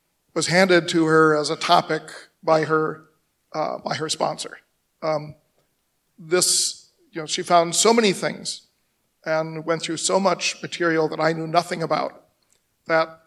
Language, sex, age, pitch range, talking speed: English, male, 40-59, 155-175 Hz, 155 wpm